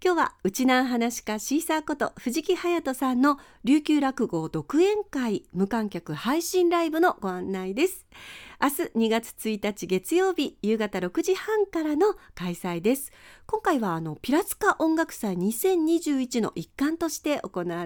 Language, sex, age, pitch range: Japanese, female, 40-59, 190-300 Hz